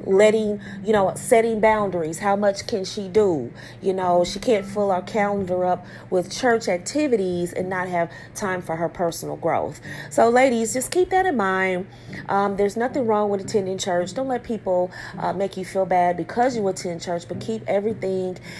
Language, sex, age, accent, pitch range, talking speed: English, female, 30-49, American, 180-210 Hz, 185 wpm